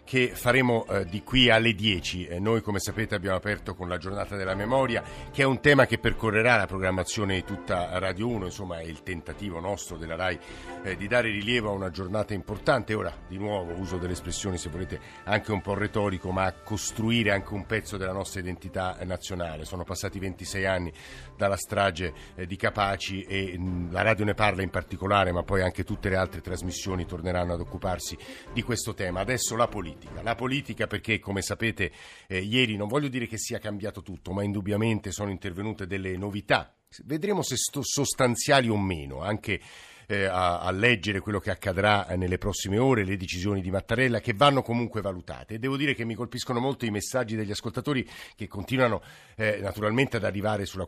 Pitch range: 95-115 Hz